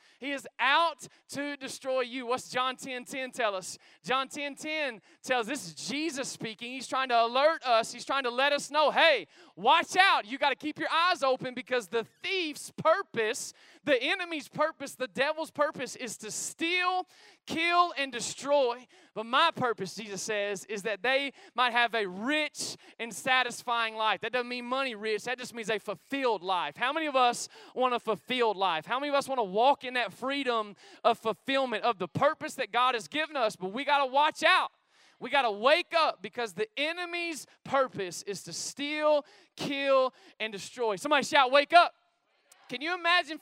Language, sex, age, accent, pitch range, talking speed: English, male, 20-39, American, 230-290 Hz, 195 wpm